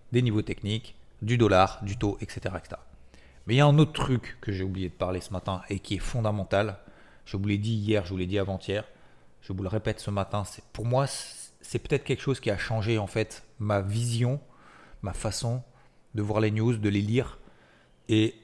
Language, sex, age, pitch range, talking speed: French, male, 30-49, 95-110 Hz, 220 wpm